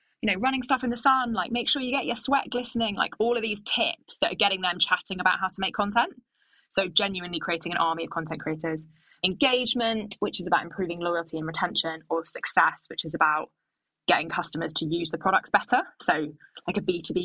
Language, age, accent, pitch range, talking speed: English, 20-39, British, 170-220 Hz, 215 wpm